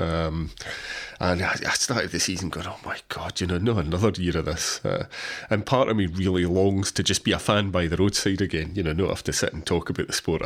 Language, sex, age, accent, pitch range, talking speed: English, male, 30-49, British, 85-100 Hz, 250 wpm